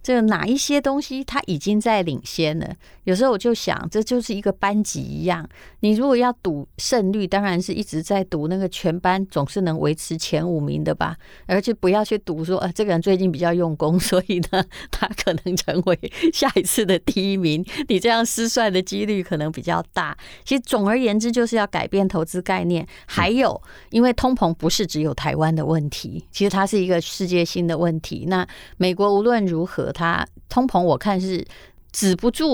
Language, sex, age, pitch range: Chinese, female, 30-49, 170-220 Hz